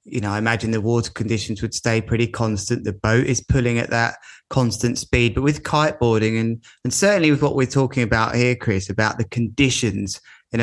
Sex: male